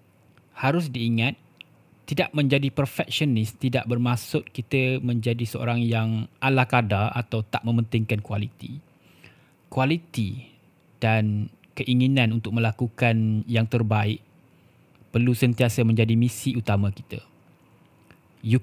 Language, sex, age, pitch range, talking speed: Malay, male, 20-39, 110-130 Hz, 95 wpm